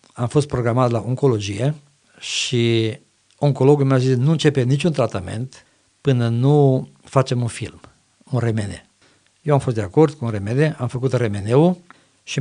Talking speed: 155 wpm